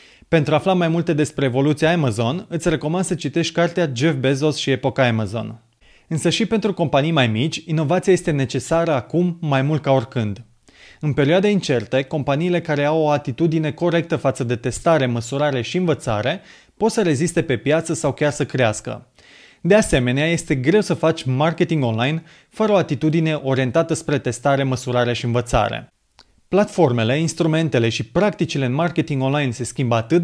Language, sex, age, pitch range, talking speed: Romanian, male, 30-49, 130-170 Hz, 165 wpm